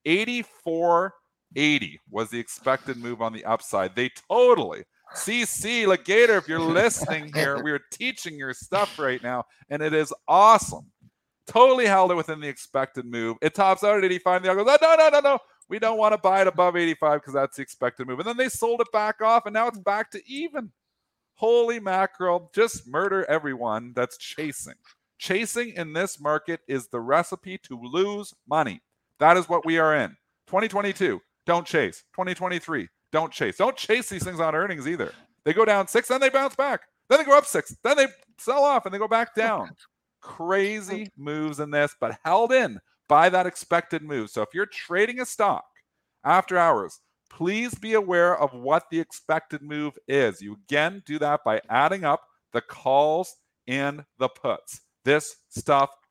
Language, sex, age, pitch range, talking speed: English, male, 50-69, 150-220 Hz, 185 wpm